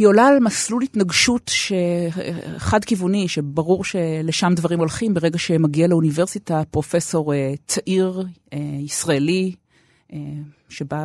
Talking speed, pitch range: 115 wpm, 150-205 Hz